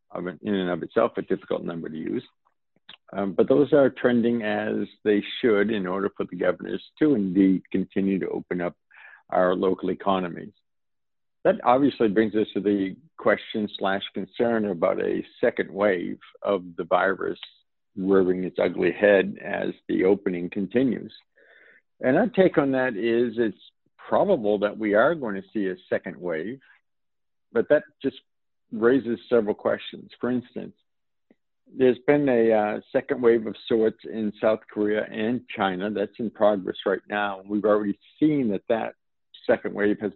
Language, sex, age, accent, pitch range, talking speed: English, male, 60-79, American, 100-125 Hz, 160 wpm